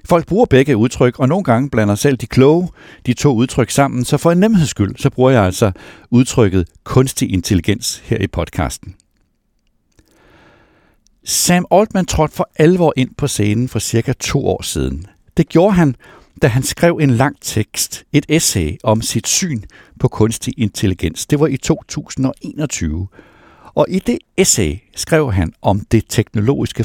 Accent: native